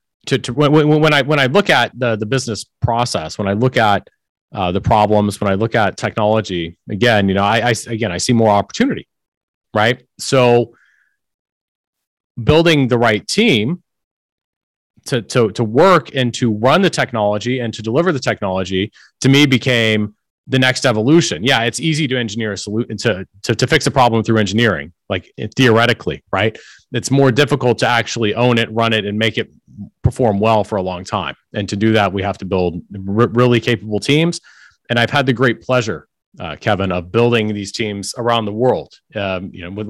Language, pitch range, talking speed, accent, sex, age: English, 100-125 Hz, 190 wpm, American, male, 30-49